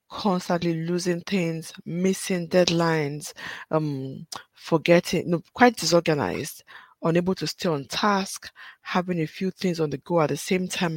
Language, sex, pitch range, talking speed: English, female, 160-190 Hz, 135 wpm